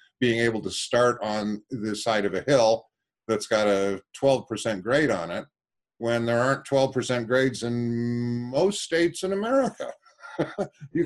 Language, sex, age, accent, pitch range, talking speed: English, male, 50-69, American, 105-135 Hz, 150 wpm